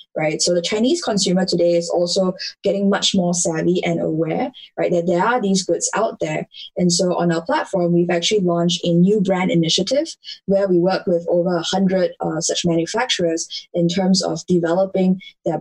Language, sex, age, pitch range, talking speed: English, female, 10-29, 170-195 Hz, 185 wpm